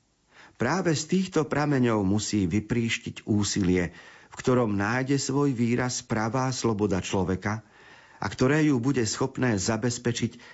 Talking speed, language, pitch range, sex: 120 wpm, Slovak, 100-130 Hz, male